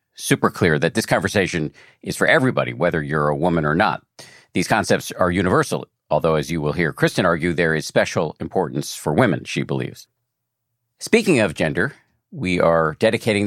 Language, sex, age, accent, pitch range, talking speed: English, male, 50-69, American, 85-120 Hz, 175 wpm